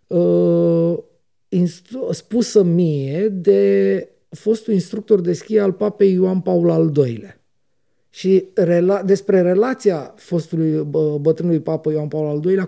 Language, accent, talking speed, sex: Romanian, native, 130 wpm, male